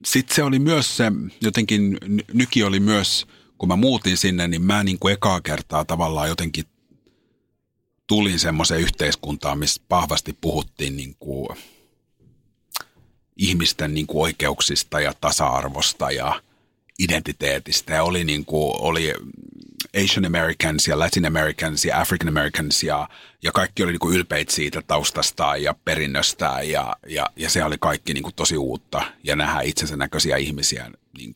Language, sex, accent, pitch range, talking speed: Finnish, male, native, 75-95 Hz, 145 wpm